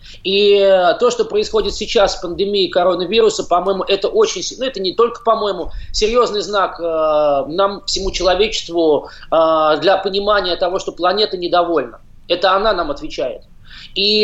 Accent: native